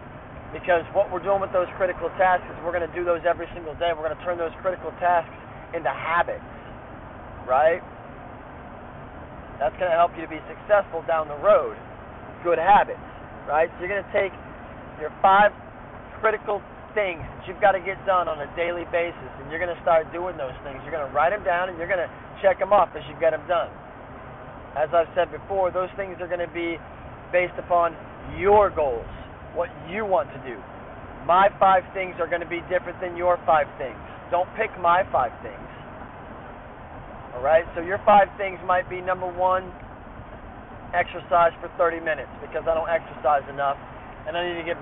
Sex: male